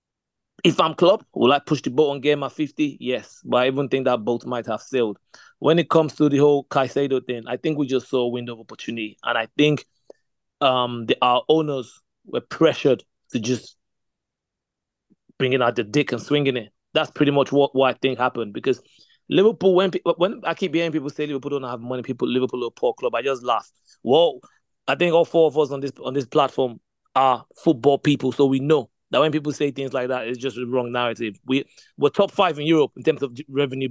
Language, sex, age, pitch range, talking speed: English, male, 30-49, 125-150 Hz, 225 wpm